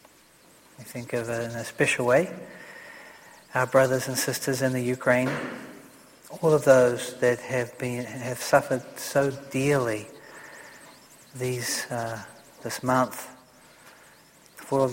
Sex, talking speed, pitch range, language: male, 120 wpm, 125-135 Hz, English